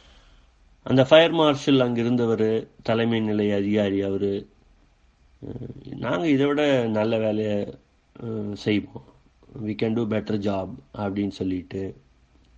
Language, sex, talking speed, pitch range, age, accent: Tamil, male, 105 wpm, 95-110 Hz, 30-49, native